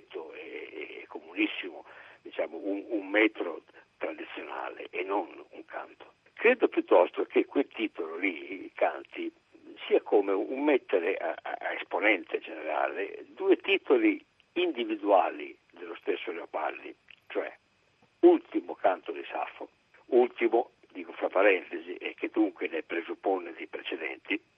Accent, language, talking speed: native, Italian, 110 wpm